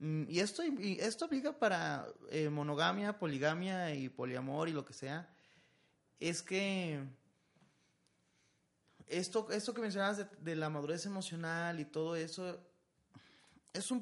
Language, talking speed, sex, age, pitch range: Spanish, 135 wpm, male, 30-49, 140-185 Hz